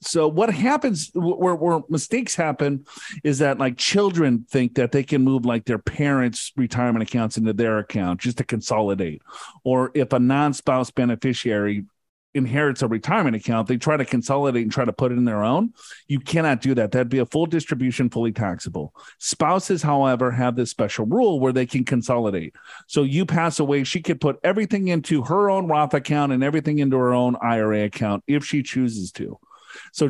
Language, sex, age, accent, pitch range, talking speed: English, male, 40-59, American, 125-155 Hz, 185 wpm